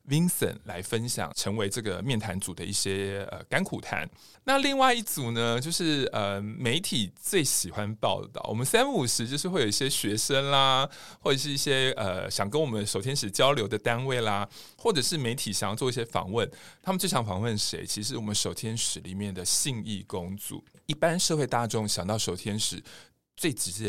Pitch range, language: 105-150 Hz, Chinese